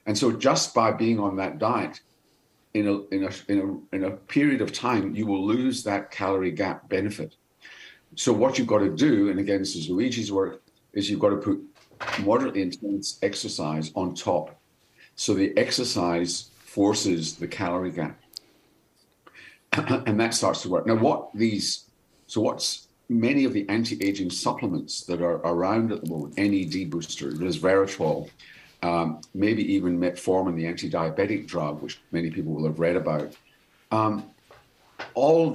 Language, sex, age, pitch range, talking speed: English, male, 50-69, 85-110 Hz, 160 wpm